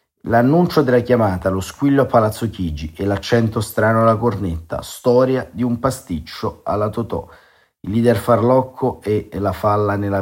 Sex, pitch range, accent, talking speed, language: male, 85-115 Hz, native, 155 wpm, Italian